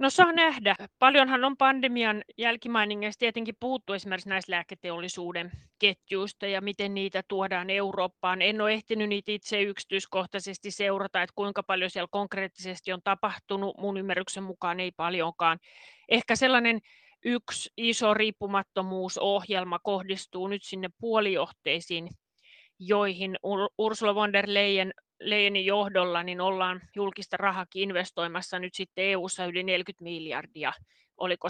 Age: 30-49